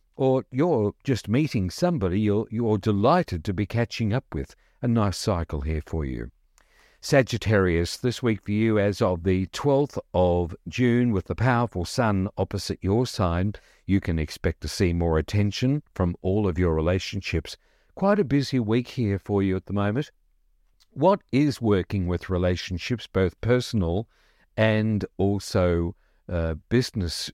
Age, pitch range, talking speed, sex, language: 50-69, 90-125 Hz, 155 wpm, male, English